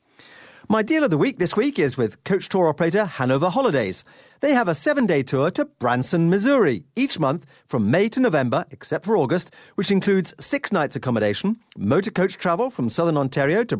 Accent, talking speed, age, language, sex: British, 185 wpm, 40-59, English, male